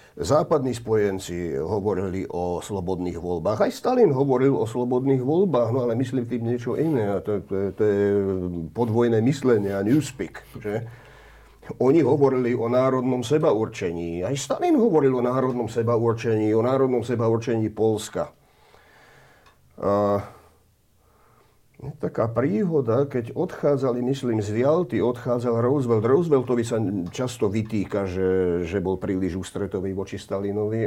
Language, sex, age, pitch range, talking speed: Slovak, male, 50-69, 95-125 Hz, 120 wpm